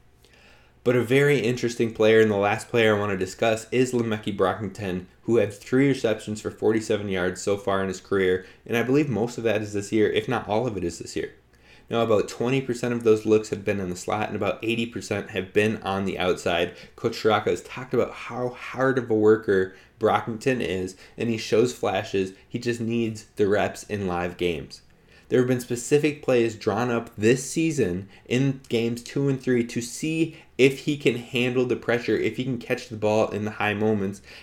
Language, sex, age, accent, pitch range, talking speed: English, male, 20-39, American, 100-120 Hz, 210 wpm